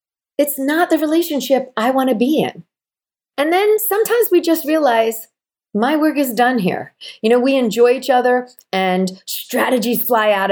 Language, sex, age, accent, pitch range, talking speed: English, female, 40-59, American, 200-300 Hz, 170 wpm